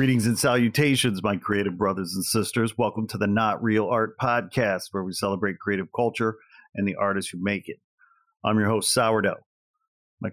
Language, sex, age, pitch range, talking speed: English, male, 40-59, 105-120 Hz, 180 wpm